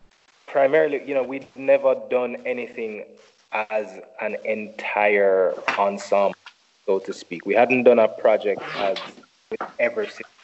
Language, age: English, 20-39